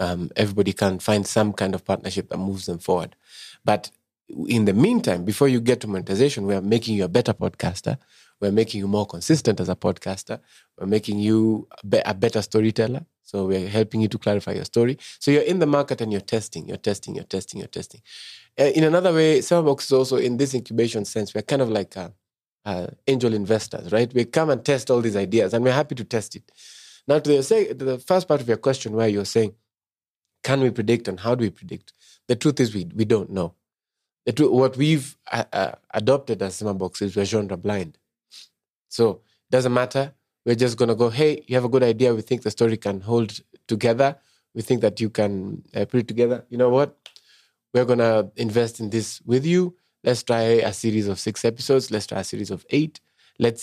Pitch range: 105-135 Hz